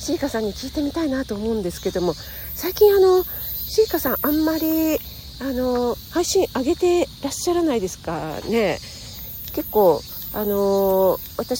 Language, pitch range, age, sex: Japanese, 185-265 Hz, 40-59, female